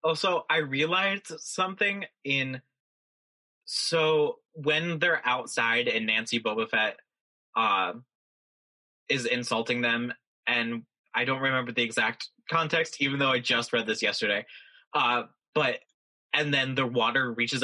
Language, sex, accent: English, male, American